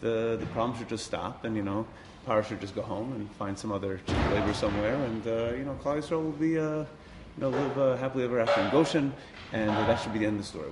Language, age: English, 30-49